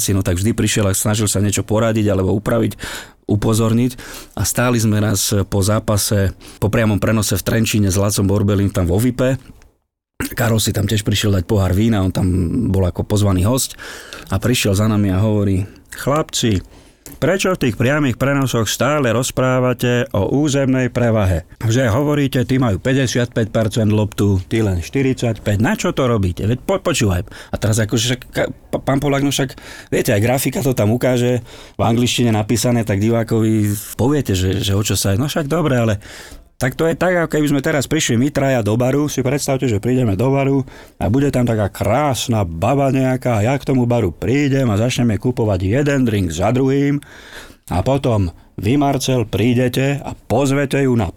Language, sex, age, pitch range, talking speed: Slovak, male, 40-59, 105-135 Hz, 175 wpm